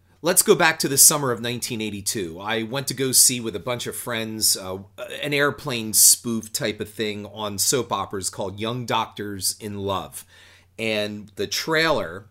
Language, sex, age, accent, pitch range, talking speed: English, male, 40-59, American, 100-125 Hz, 175 wpm